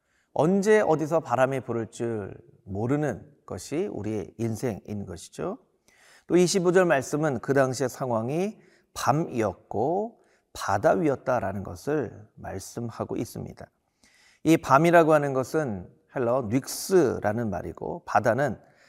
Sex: male